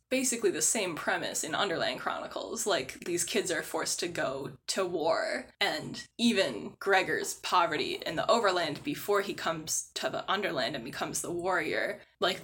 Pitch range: 175-220 Hz